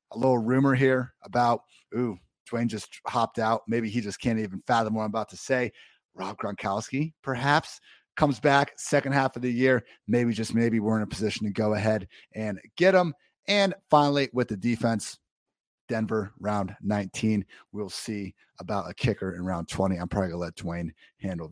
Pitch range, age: 110-140 Hz, 30-49